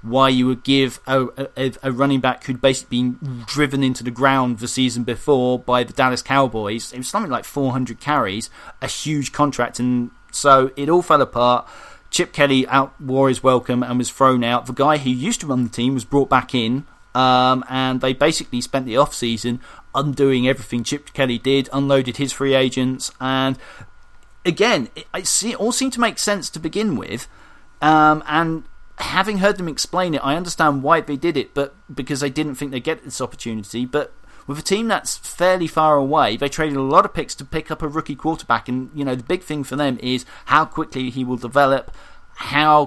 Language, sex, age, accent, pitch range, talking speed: English, male, 40-59, British, 125-150 Hz, 205 wpm